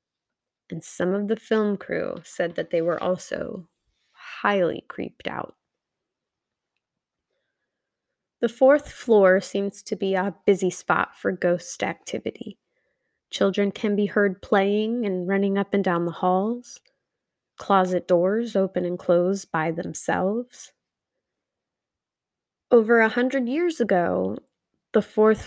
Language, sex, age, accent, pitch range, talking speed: English, female, 20-39, American, 185-225 Hz, 125 wpm